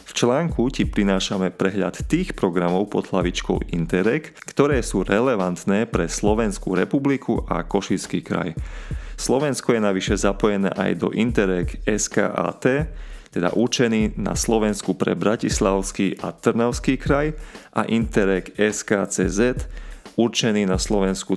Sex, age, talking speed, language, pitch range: male, 30-49, 120 wpm, Slovak, 90-110 Hz